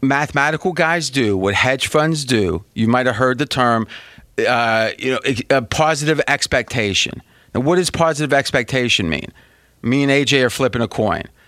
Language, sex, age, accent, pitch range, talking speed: English, male, 30-49, American, 120-155 Hz, 165 wpm